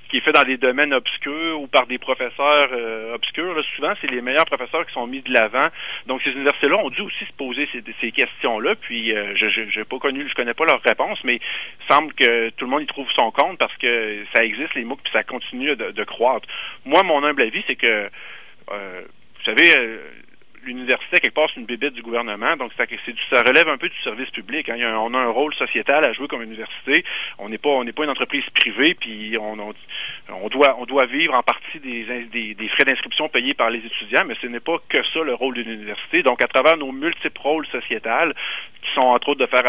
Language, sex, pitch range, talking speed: French, male, 115-140 Hz, 250 wpm